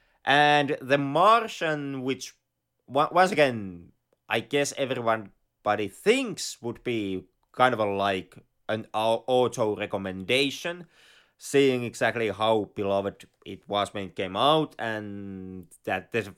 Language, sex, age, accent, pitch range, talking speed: English, male, 30-49, Finnish, 100-140 Hz, 120 wpm